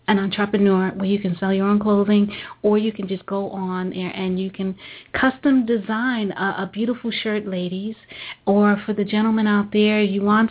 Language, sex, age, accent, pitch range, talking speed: English, female, 30-49, American, 185-210 Hz, 195 wpm